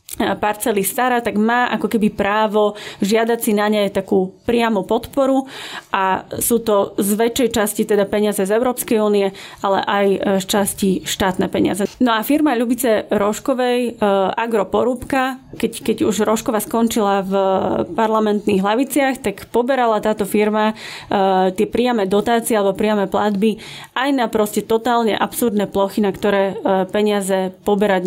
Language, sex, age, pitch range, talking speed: Slovak, female, 30-49, 200-230 Hz, 140 wpm